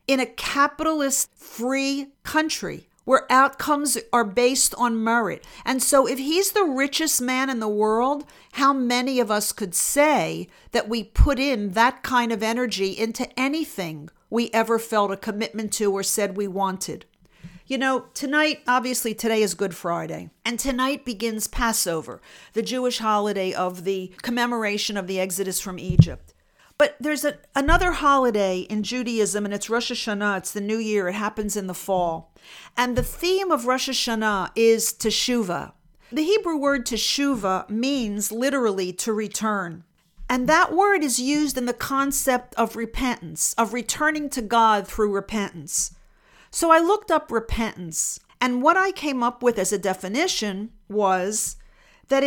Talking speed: 155 wpm